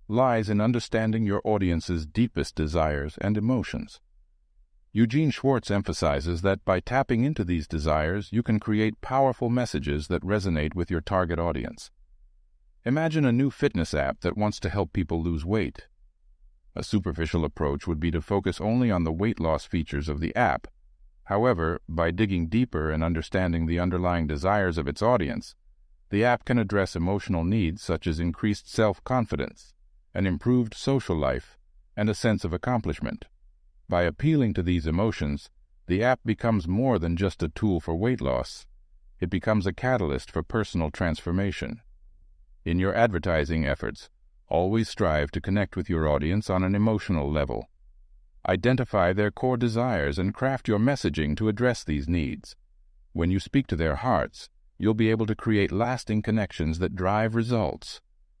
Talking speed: 160 wpm